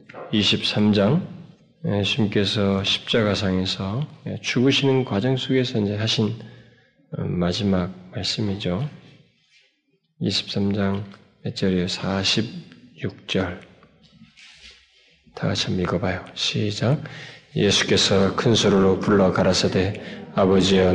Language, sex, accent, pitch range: Korean, male, native, 95-125 Hz